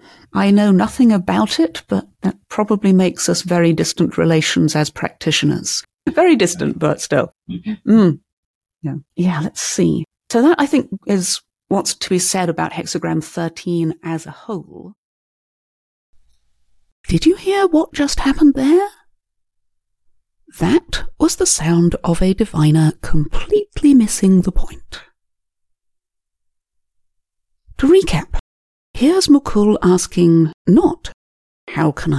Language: English